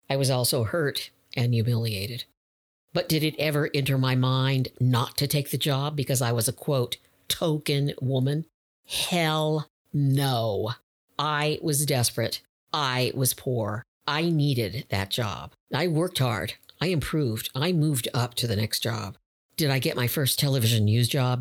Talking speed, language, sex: 160 wpm, English, female